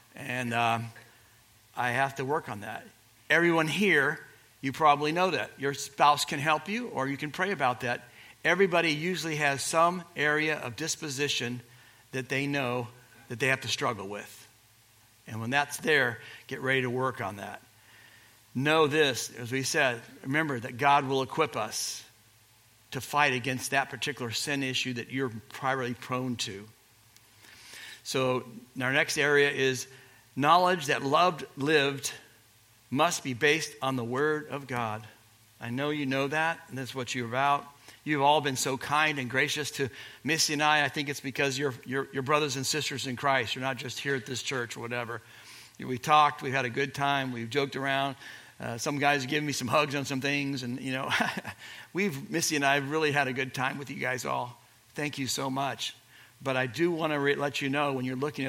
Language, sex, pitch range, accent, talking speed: English, male, 125-145 Hz, American, 190 wpm